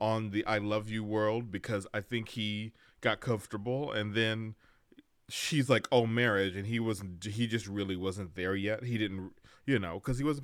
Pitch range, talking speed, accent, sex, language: 95-115 Hz, 200 wpm, American, male, English